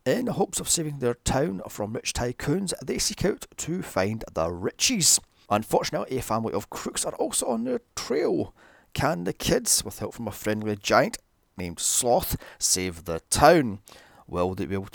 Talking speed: 175 wpm